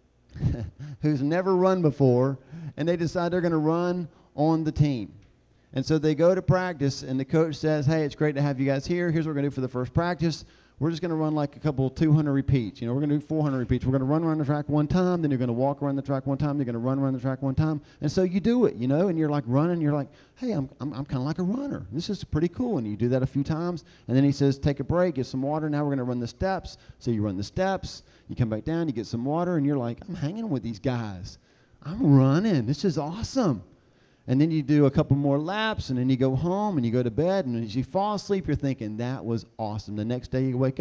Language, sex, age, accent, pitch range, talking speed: English, male, 40-59, American, 130-170 Hz, 290 wpm